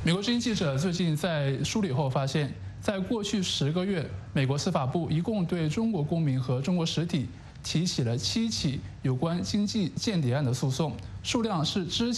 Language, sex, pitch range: English, male, 135-185 Hz